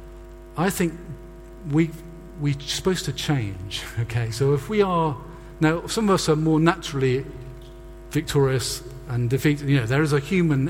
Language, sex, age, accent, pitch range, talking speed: English, male, 50-69, British, 120-170 Hz, 150 wpm